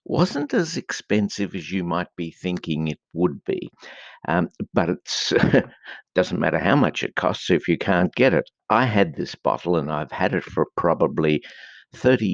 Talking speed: 175 wpm